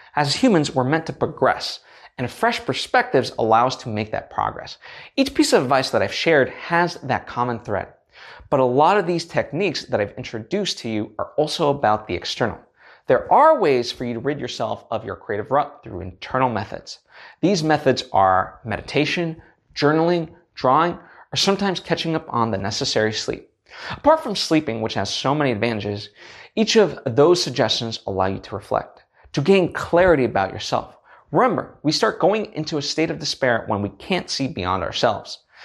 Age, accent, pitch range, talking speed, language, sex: 20-39, American, 115-165 Hz, 180 wpm, English, male